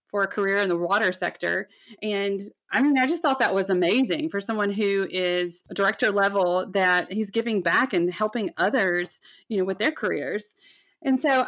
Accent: American